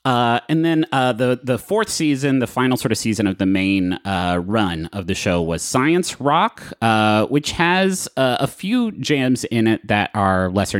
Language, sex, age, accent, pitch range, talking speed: English, male, 30-49, American, 100-135 Hz, 200 wpm